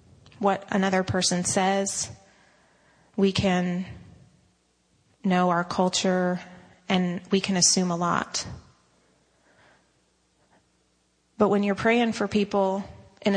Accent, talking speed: American, 100 wpm